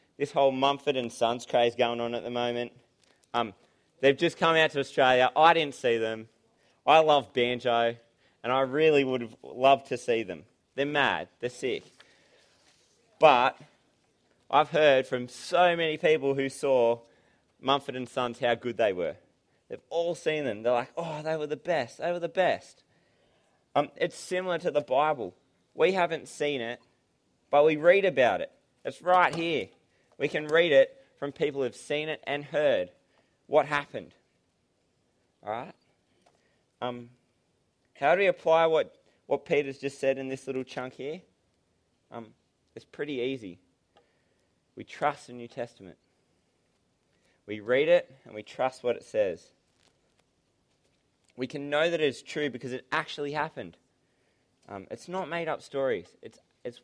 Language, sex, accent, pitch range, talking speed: English, male, Australian, 120-155 Hz, 165 wpm